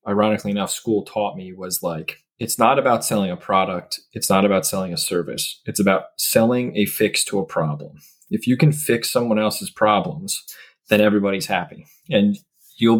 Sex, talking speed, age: male, 180 wpm, 20-39